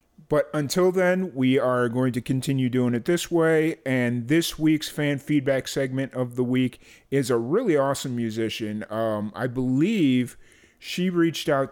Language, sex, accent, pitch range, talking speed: English, male, American, 120-140 Hz, 165 wpm